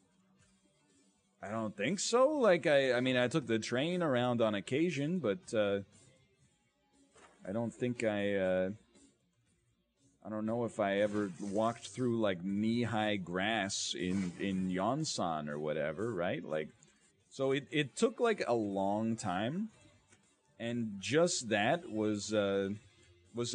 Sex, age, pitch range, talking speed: male, 30-49, 100-135 Hz, 140 wpm